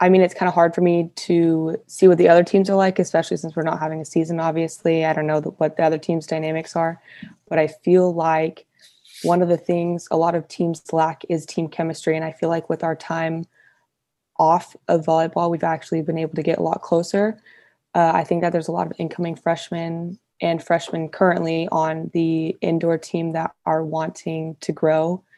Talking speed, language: 215 wpm, English